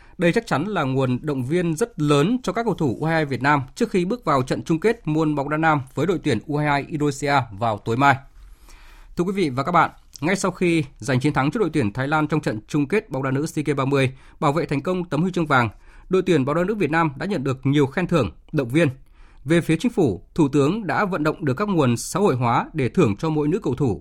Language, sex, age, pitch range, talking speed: Vietnamese, male, 20-39, 135-170 Hz, 260 wpm